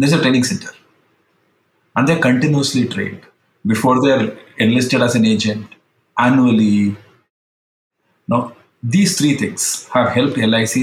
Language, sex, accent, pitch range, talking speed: English, male, Indian, 110-130 Hz, 120 wpm